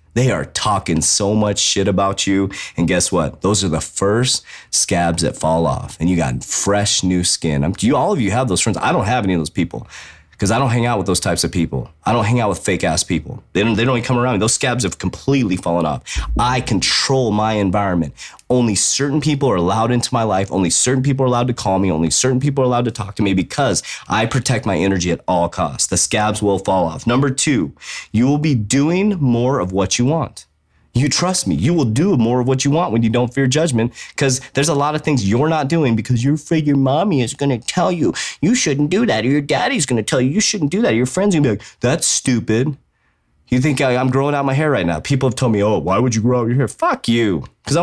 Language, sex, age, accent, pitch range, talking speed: English, male, 30-49, American, 100-145 Hz, 260 wpm